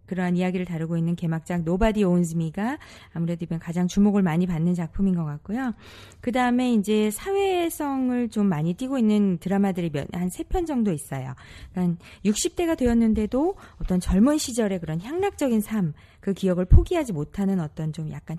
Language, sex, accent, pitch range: Korean, female, native, 165-225 Hz